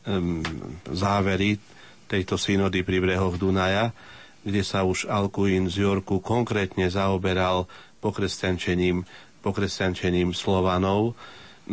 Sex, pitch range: male, 90-100 Hz